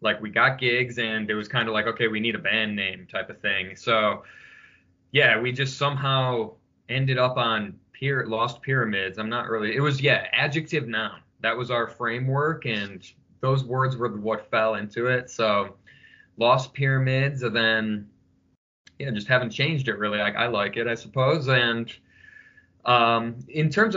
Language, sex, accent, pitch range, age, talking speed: English, male, American, 105-130 Hz, 20-39, 175 wpm